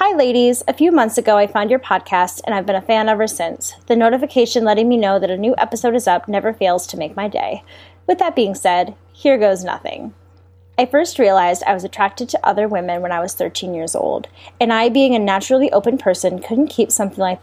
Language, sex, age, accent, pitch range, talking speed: English, female, 20-39, American, 185-235 Hz, 230 wpm